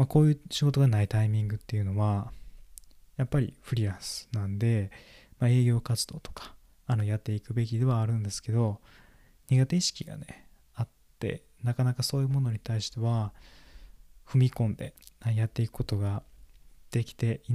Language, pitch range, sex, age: Japanese, 105-125 Hz, male, 20-39